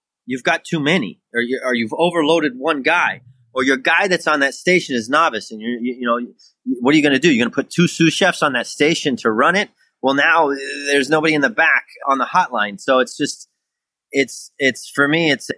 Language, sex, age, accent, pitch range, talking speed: English, male, 30-49, American, 120-155 Hz, 240 wpm